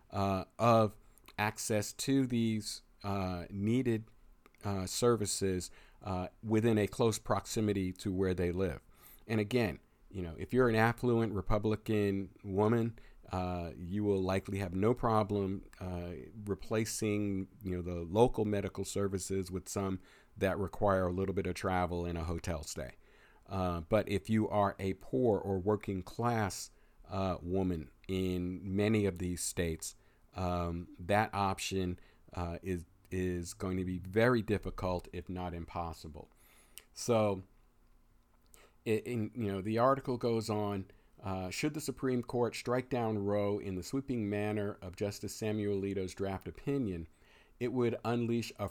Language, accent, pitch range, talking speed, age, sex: English, American, 95-110 Hz, 145 wpm, 50-69, male